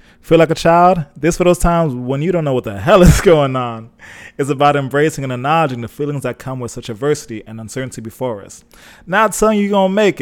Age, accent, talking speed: 20-39, American, 240 wpm